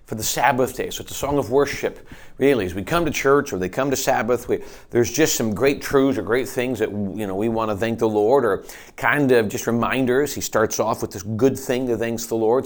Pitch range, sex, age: 110-135 Hz, male, 40-59